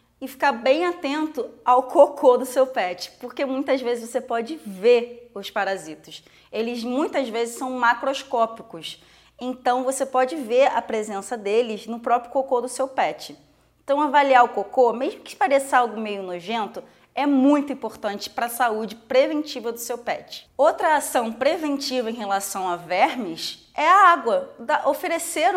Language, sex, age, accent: Portuguese, female, 20-39, Brazilian